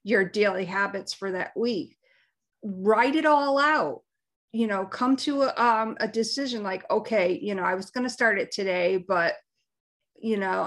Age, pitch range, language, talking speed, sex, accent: 40-59, 190-235 Hz, English, 180 wpm, female, American